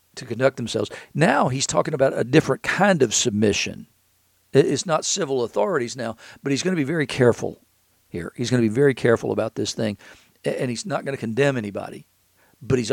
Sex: male